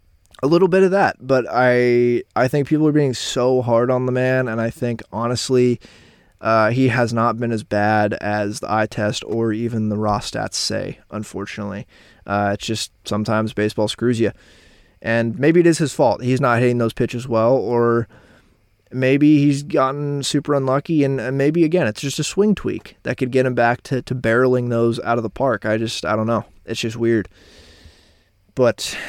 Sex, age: male, 20-39